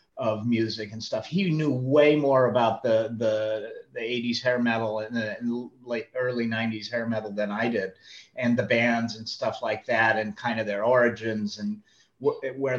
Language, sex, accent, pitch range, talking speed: English, male, American, 115-155 Hz, 190 wpm